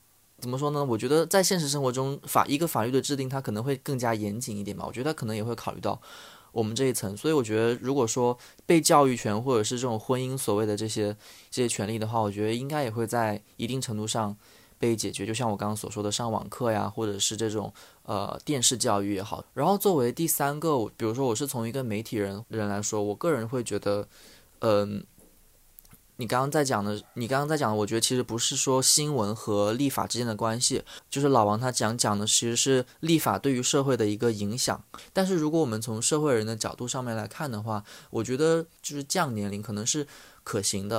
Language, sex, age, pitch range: Chinese, male, 20-39, 105-140 Hz